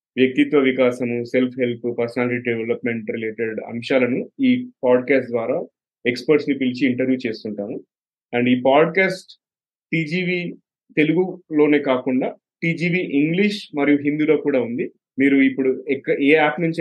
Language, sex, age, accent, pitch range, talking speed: Telugu, male, 30-49, native, 120-145 Hz, 120 wpm